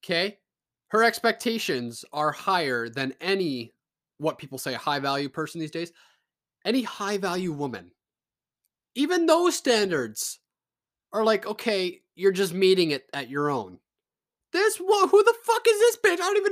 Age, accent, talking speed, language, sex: 20-39, American, 145 wpm, English, male